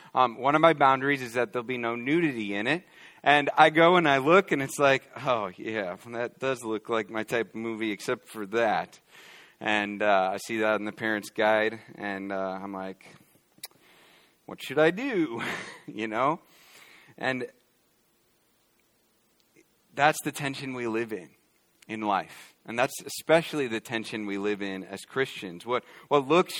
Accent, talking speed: American, 170 wpm